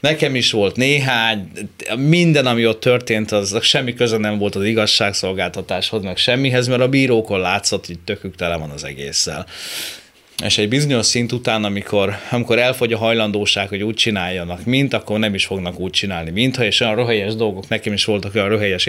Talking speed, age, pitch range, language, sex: 180 wpm, 30-49, 95-125 Hz, Hungarian, male